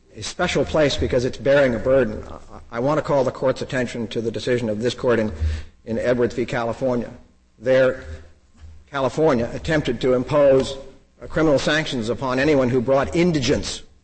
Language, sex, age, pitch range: English, male, 50-69, 90-135 Hz